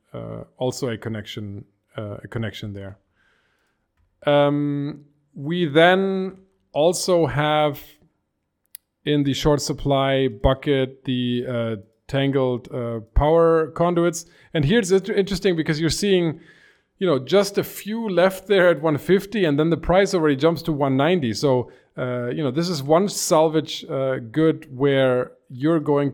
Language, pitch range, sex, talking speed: English, 120-160 Hz, male, 140 wpm